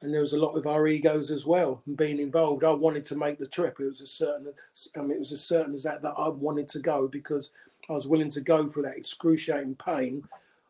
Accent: British